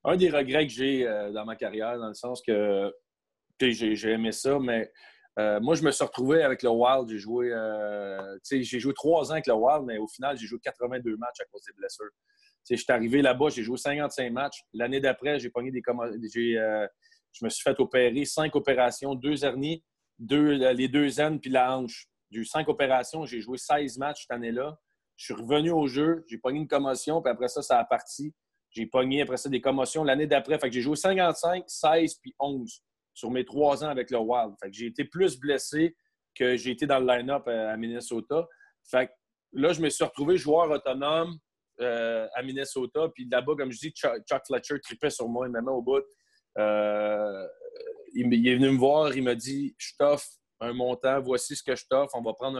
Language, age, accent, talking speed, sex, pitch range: French, 30-49, Canadian, 215 wpm, male, 120-150 Hz